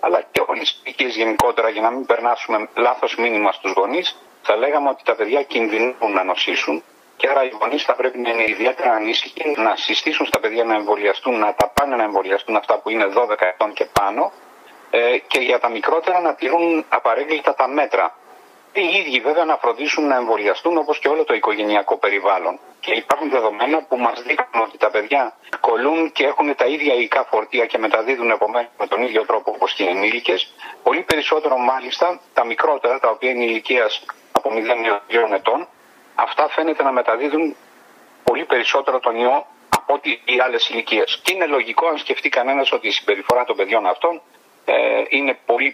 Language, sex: Greek, male